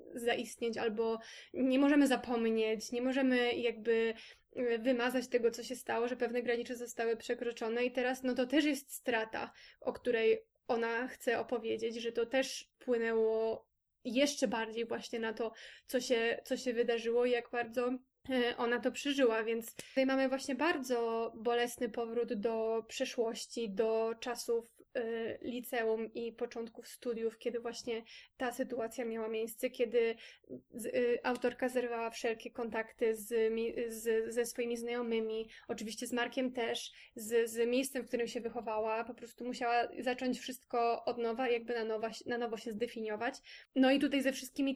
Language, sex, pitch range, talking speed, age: Polish, female, 230-250 Hz, 145 wpm, 20-39